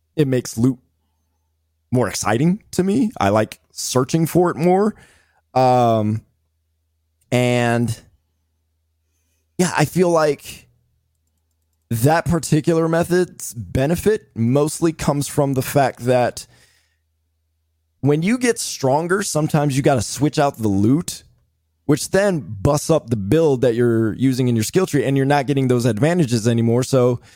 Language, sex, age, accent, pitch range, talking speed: English, male, 20-39, American, 85-140 Hz, 135 wpm